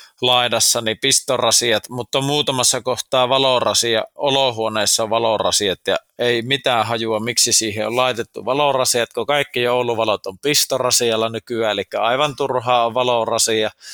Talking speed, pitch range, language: 130 wpm, 115-135 Hz, Finnish